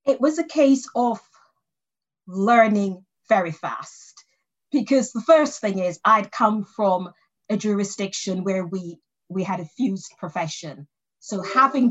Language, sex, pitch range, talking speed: English, female, 175-230 Hz, 135 wpm